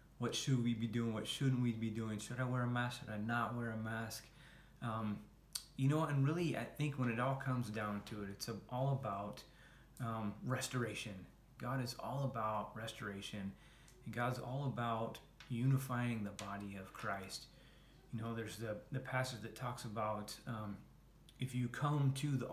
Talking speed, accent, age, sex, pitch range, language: 185 wpm, American, 30-49, male, 110-130 Hz, English